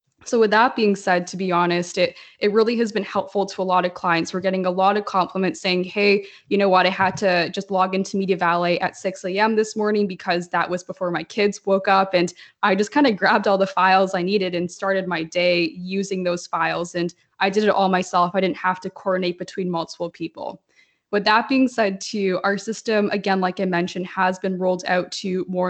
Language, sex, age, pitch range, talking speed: English, female, 20-39, 180-205 Hz, 235 wpm